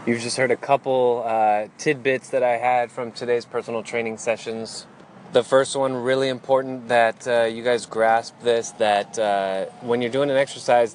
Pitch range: 100-120 Hz